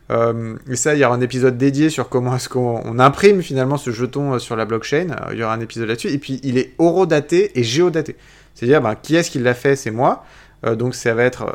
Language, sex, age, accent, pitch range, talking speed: French, male, 30-49, French, 120-150 Hz, 250 wpm